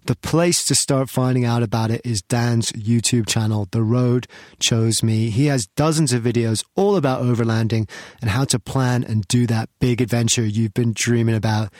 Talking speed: 190 wpm